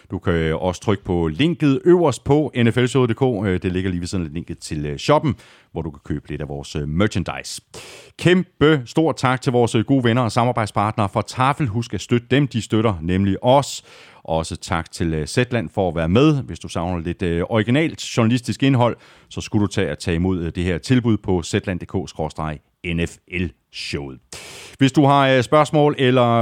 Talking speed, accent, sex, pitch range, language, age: 175 wpm, native, male, 90-135 Hz, Danish, 30-49